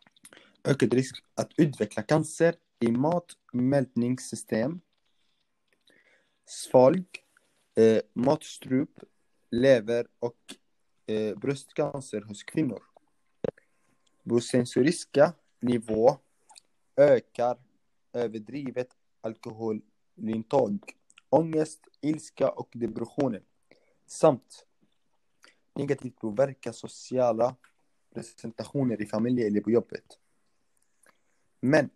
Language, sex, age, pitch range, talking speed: Swedish, male, 30-49, 110-135 Hz, 70 wpm